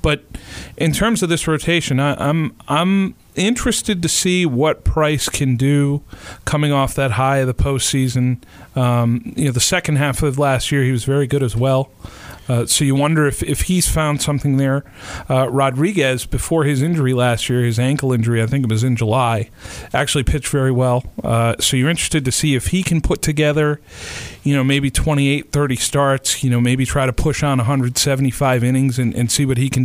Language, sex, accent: English, male, American